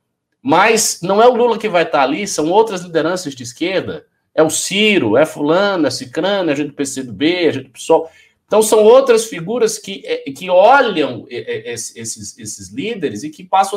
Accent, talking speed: Brazilian, 190 wpm